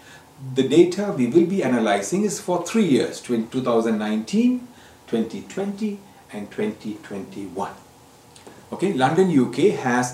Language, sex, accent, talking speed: English, male, Indian, 105 wpm